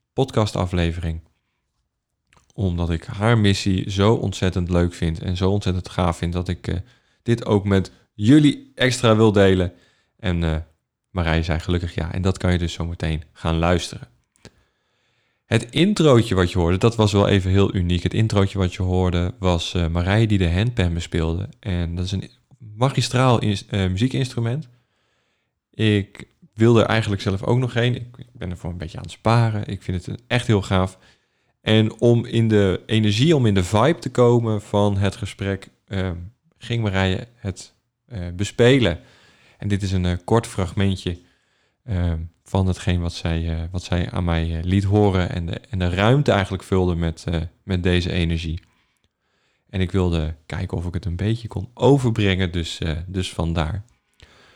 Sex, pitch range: male, 90-115 Hz